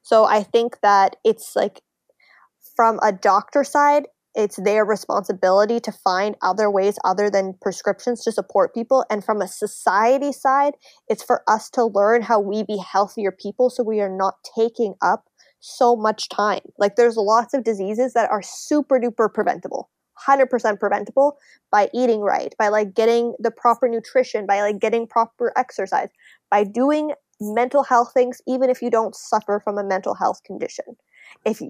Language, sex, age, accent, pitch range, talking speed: English, female, 20-39, American, 205-250 Hz, 170 wpm